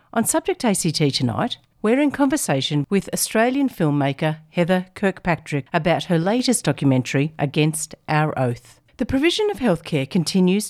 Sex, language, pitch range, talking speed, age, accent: female, English, 145-195 Hz, 135 wpm, 50-69, Australian